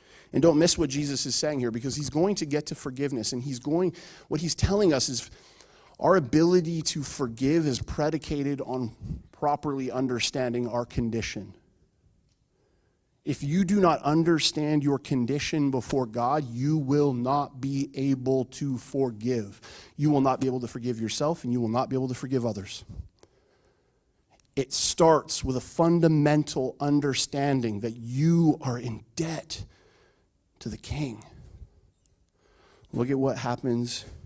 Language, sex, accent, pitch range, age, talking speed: English, male, American, 120-165 Hz, 30-49, 150 wpm